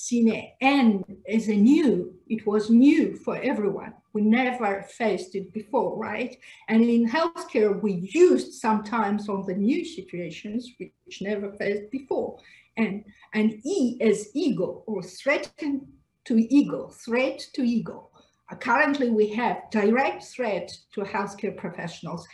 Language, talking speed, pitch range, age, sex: English, 135 wpm, 200-270 Hz, 50-69, female